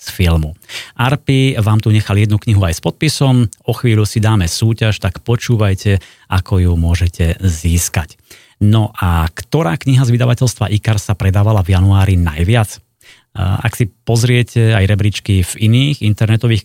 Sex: male